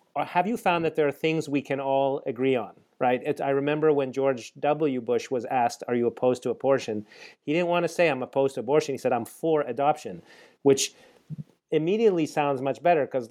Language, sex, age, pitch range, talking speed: English, male, 30-49, 120-150 Hz, 205 wpm